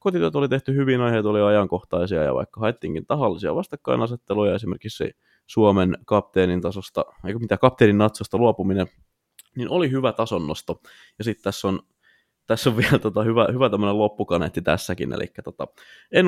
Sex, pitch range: male, 95-125 Hz